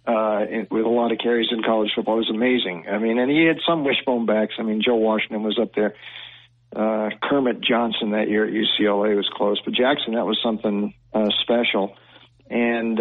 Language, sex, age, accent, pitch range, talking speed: English, male, 50-69, American, 110-125 Hz, 205 wpm